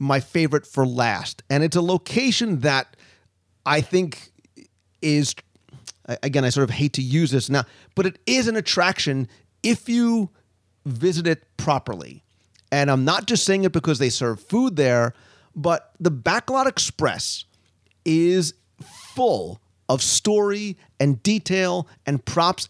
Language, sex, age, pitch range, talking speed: English, male, 30-49, 130-185 Hz, 145 wpm